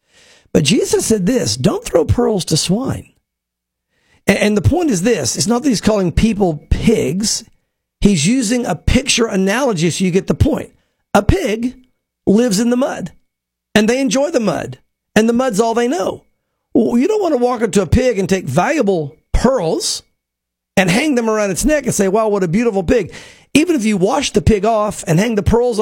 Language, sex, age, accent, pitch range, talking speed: English, male, 50-69, American, 190-245 Hz, 200 wpm